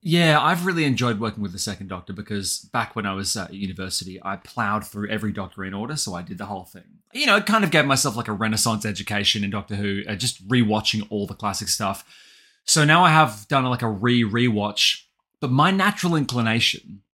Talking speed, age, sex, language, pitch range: 215 wpm, 20-39, male, English, 105-145 Hz